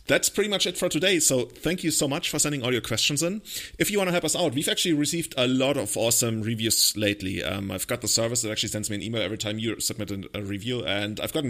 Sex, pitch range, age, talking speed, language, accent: male, 110-140 Hz, 30-49, 275 wpm, English, German